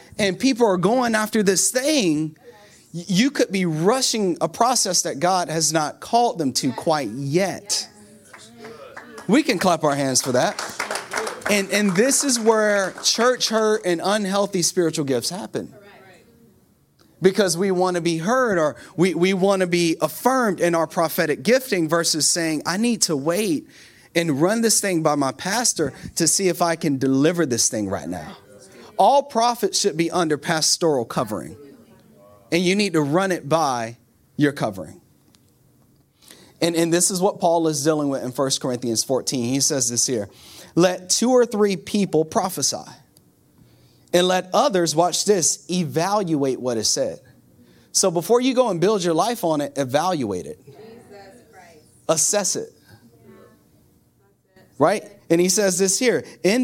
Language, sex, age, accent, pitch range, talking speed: English, male, 30-49, American, 155-205 Hz, 160 wpm